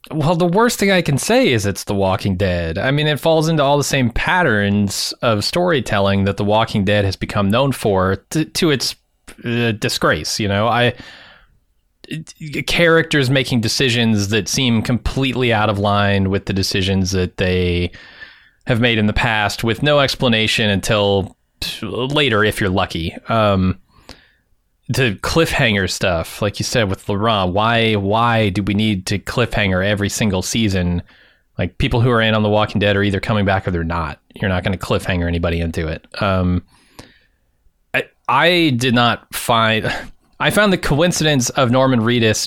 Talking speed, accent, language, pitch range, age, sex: 170 wpm, American, English, 100-125 Hz, 30-49, male